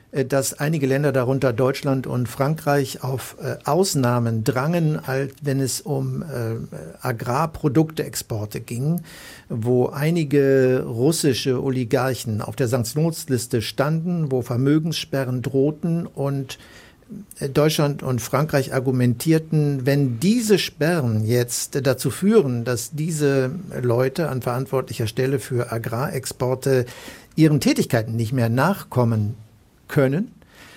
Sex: male